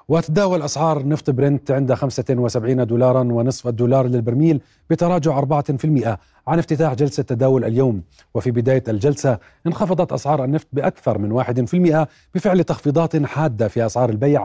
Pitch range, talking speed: 120-150 Hz, 135 wpm